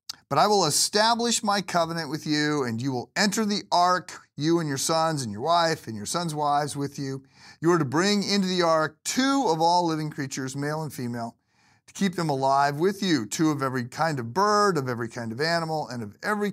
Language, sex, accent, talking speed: English, male, American, 225 wpm